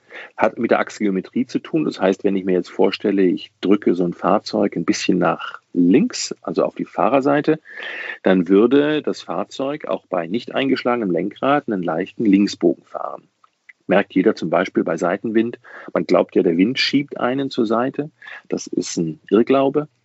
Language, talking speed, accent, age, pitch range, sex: German, 175 wpm, German, 40-59, 95-135 Hz, male